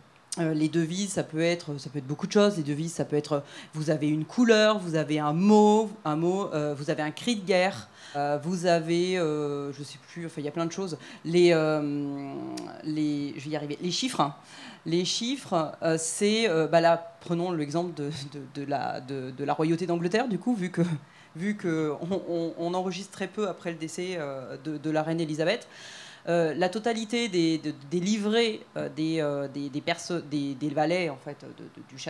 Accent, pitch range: French, 150-190 Hz